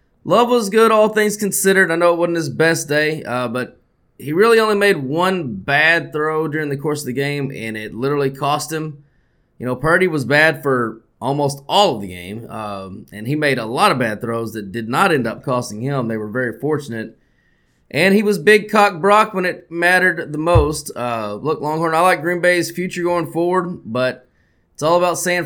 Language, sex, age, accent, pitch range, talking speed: English, male, 20-39, American, 130-175 Hz, 210 wpm